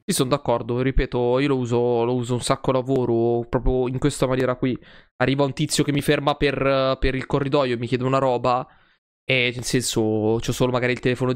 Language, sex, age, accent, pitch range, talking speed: Italian, male, 20-39, native, 120-135 Hz, 210 wpm